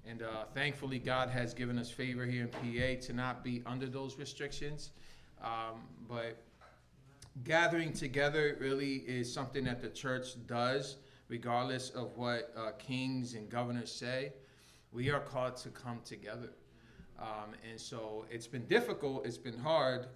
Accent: American